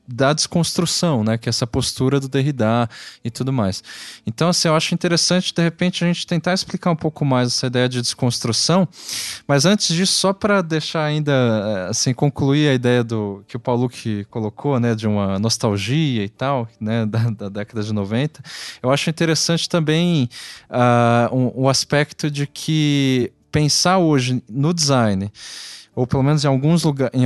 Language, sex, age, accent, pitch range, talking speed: Portuguese, male, 20-39, Brazilian, 115-150 Hz, 180 wpm